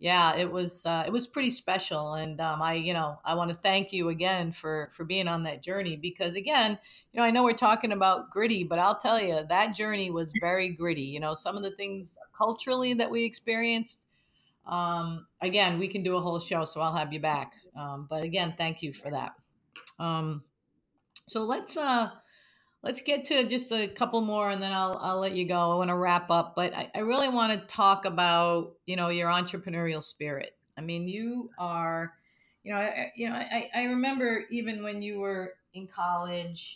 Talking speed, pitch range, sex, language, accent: 210 wpm, 165-215 Hz, female, English, American